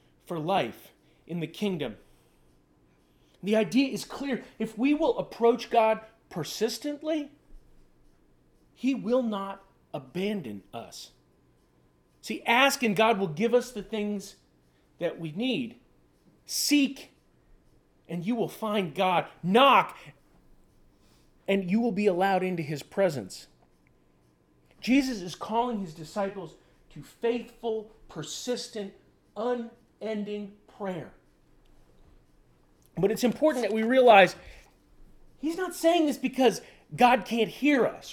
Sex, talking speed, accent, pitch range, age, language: male, 115 wpm, American, 170-235 Hz, 40-59, English